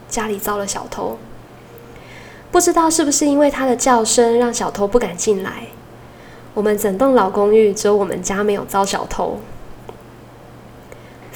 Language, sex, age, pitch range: Chinese, female, 10-29, 205-250 Hz